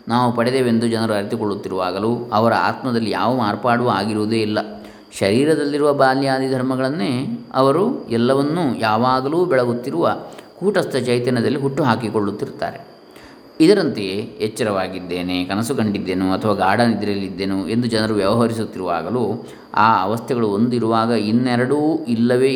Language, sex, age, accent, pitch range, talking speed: Kannada, male, 20-39, native, 110-130 Hz, 95 wpm